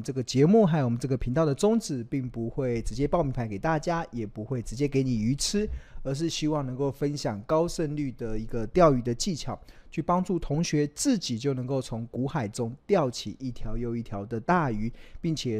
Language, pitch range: Chinese, 115-150 Hz